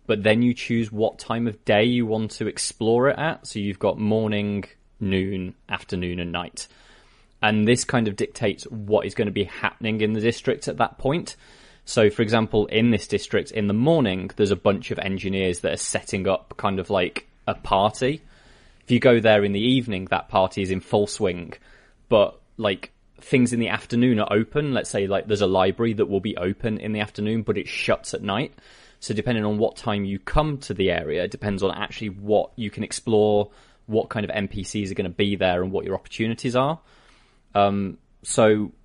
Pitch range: 100-120 Hz